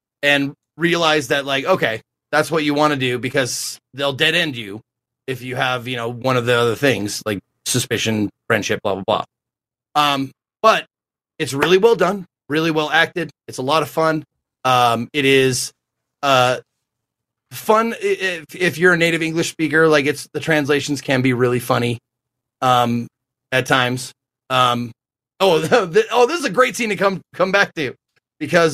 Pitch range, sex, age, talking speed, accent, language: 125-165 Hz, male, 30-49, 175 wpm, American, English